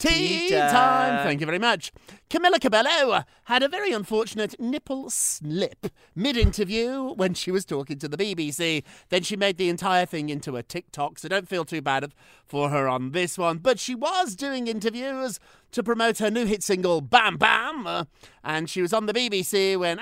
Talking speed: 185 wpm